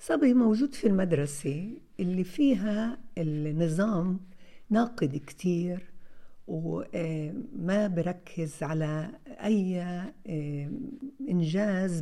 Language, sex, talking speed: Arabic, female, 70 wpm